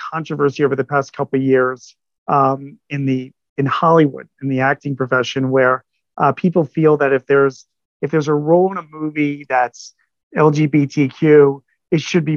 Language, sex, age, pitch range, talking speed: English, male, 40-59, 140-170 Hz, 170 wpm